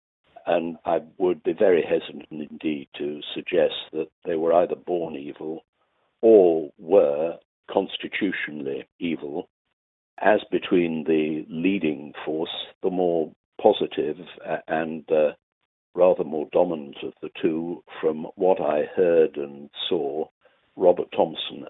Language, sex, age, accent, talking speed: English, male, 60-79, British, 120 wpm